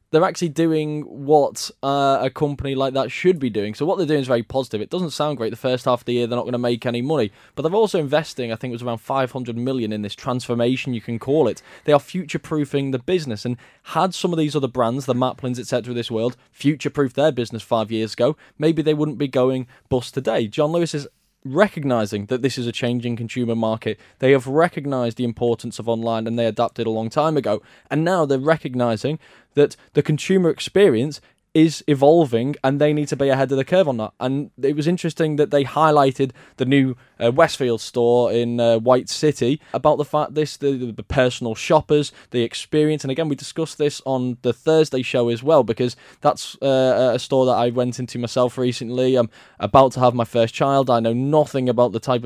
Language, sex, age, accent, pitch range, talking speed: English, male, 10-29, British, 120-150 Hz, 220 wpm